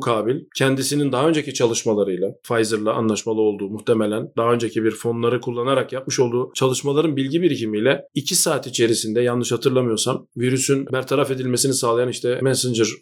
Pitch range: 130-170 Hz